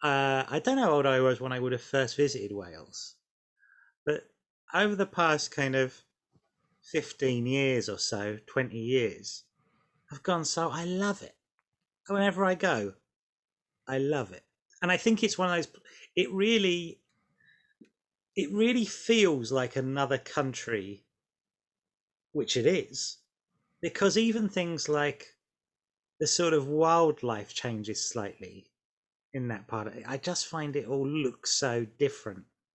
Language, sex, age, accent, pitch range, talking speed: English, male, 30-49, British, 115-170 Hz, 145 wpm